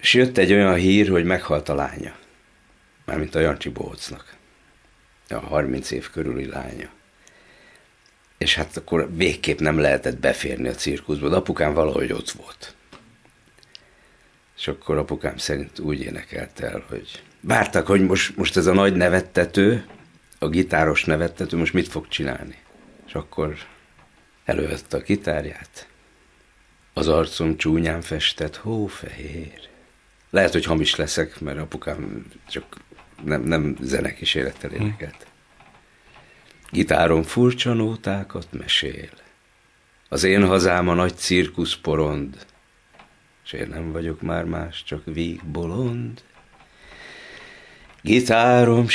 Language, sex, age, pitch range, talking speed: Hungarian, male, 60-79, 80-105 Hz, 120 wpm